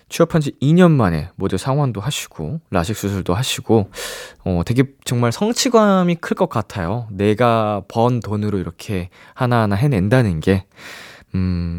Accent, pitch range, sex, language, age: native, 100-160 Hz, male, Korean, 20-39